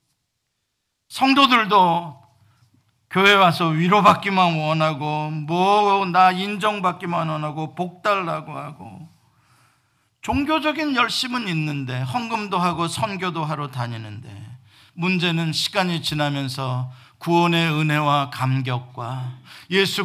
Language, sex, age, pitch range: Korean, male, 50-69, 145-245 Hz